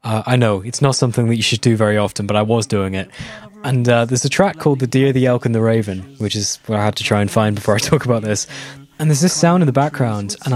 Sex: male